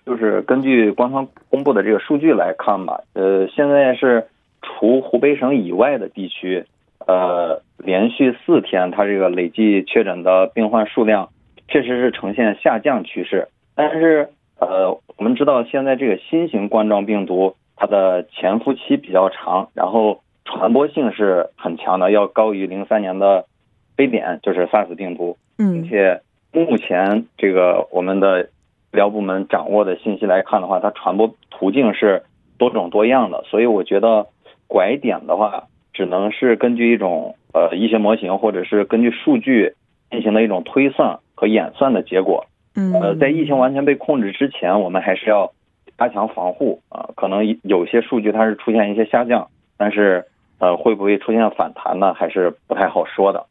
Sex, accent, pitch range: male, Chinese, 95-125 Hz